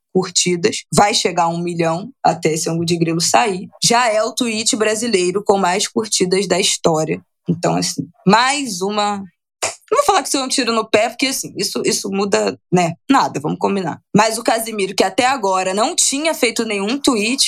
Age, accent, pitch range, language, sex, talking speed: 20-39, Brazilian, 175-225 Hz, Portuguese, female, 190 wpm